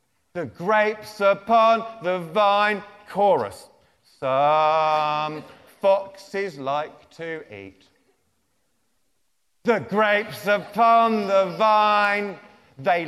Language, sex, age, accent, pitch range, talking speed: English, male, 40-59, British, 155-215 Hz, 80 wpm